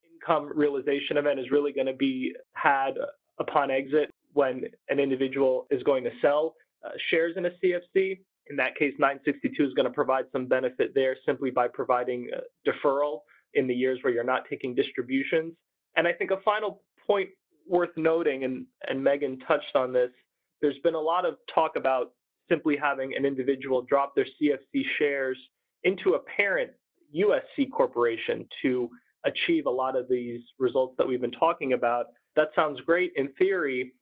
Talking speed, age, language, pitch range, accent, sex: 170 wpm, 20-39, English, 130-185 Hz, American, male